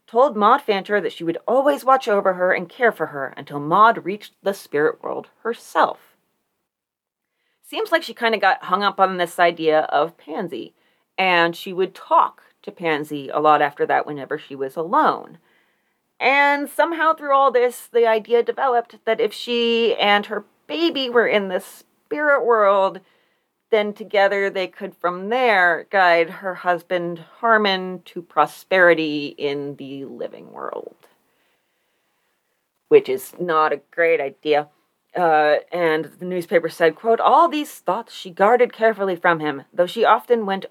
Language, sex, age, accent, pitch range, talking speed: English, female, 30-49, American, 165-230 Hz, 160 wpm